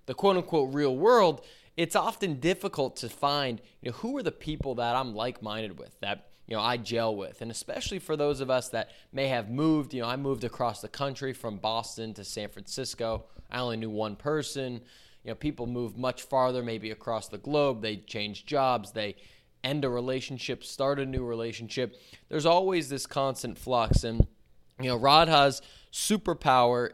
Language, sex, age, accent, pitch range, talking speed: English, male, 20-39, American, 110-135 Hz, 185 wpm